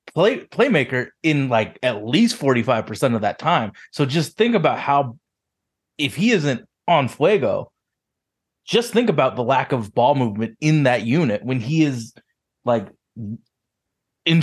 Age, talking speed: 20-39, 150 wpm